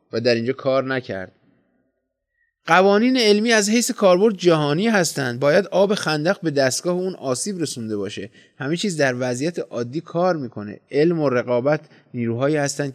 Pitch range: 120-155 Hz